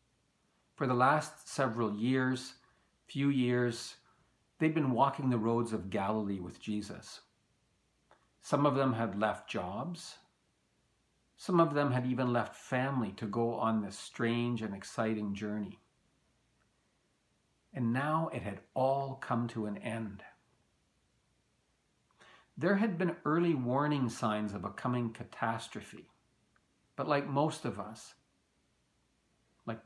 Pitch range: 110-145 Hz